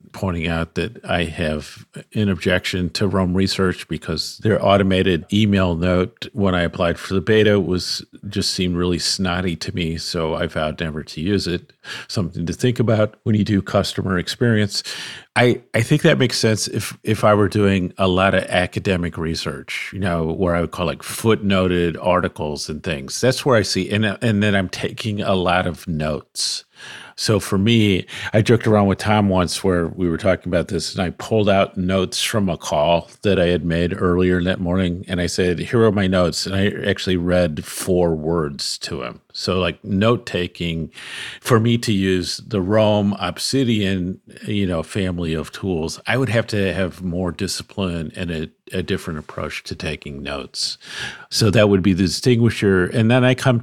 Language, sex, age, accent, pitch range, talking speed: English, male, 50-69, American, 90-110 Hz, 190 wpm